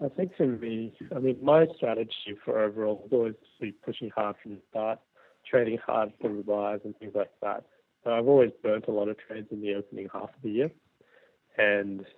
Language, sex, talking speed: English, male, 210 wpm